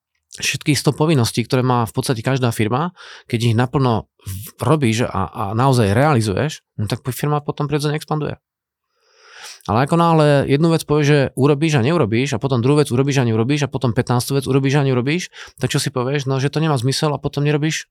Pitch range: 115-150 Hz